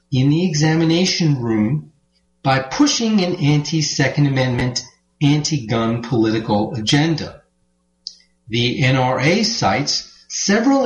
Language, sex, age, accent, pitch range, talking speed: English, male, 40-59, American, 125-185 Hz, 90 wpm